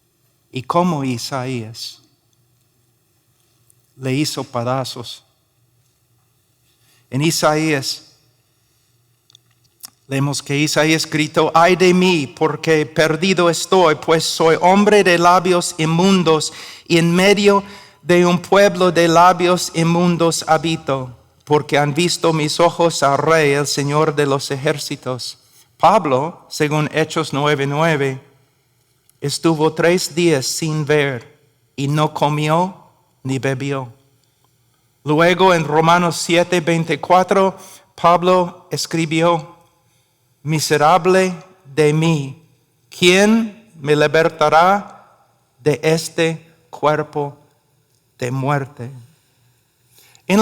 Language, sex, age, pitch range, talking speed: Spanish, male, 50-69, 130-170 Hz, 95 wpm